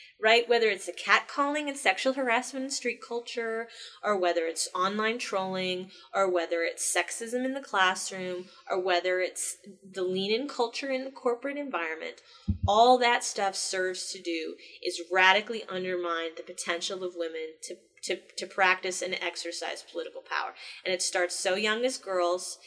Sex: female